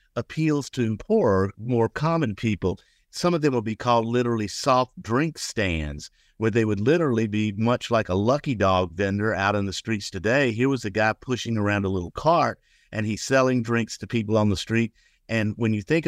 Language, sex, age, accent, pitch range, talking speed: English, male, 50-69, American, 100-130 Hz, 200 wpm